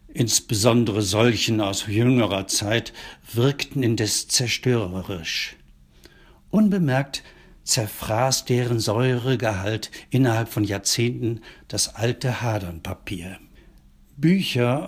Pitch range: 105-130 Hz